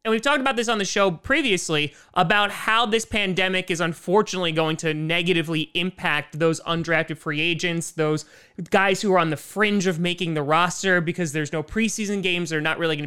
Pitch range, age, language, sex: 160-205 Hz, 20-39, English, male